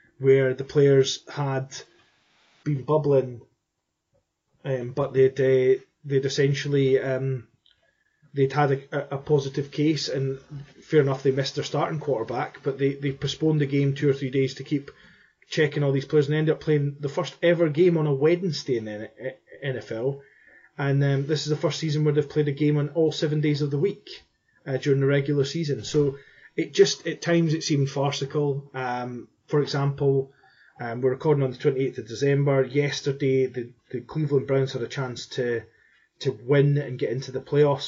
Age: 30-49